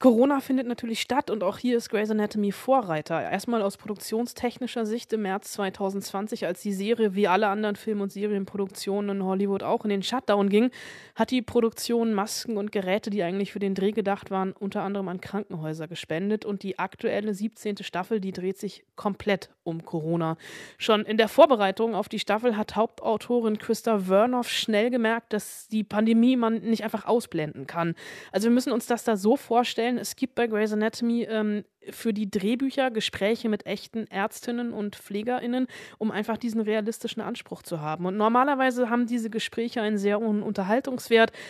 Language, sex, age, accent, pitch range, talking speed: German, female, 20-39, German, 200-235 Hz, 180 wpm